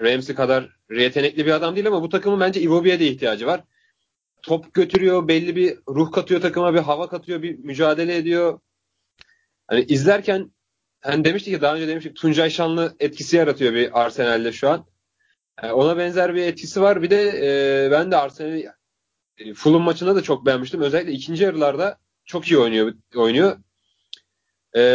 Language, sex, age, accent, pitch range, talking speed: Turkish, male, 30-49, native, 135-170 Hz, 165 wpm